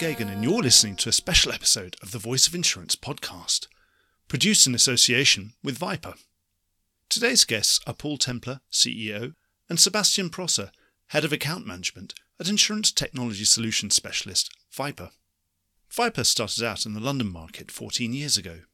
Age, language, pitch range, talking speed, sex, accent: 40-59, English, 100-150 Hz, 150 wpm, male, British